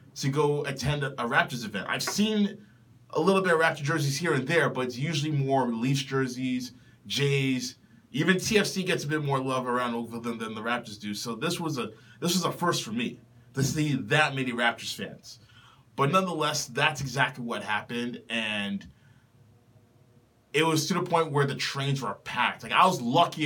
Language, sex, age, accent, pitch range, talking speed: English, male, 20-39, American, 120-150 Hz, 190 wpm